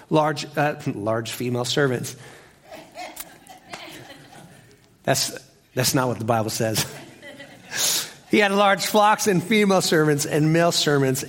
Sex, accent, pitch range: male, American, 150-215 Hz